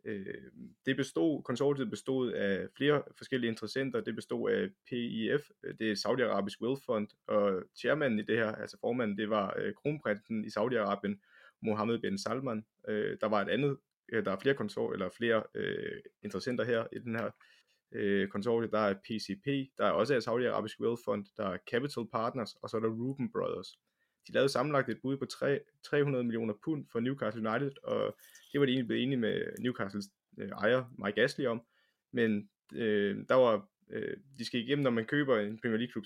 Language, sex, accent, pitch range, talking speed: Danish, male, native, 110-135 Hz, 180 wpm